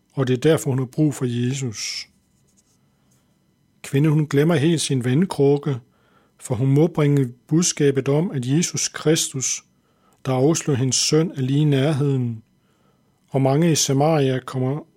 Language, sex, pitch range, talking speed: Danish, male, 130-150 Hz, 150 wpm